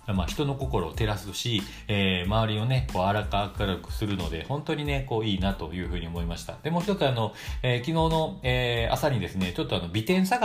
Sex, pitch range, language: male, 90-125 Hz, Japanese